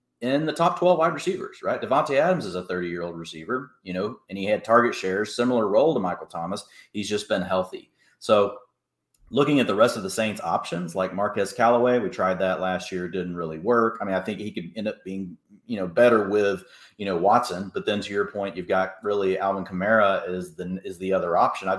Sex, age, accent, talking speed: male, 30-49, American, 225 wpm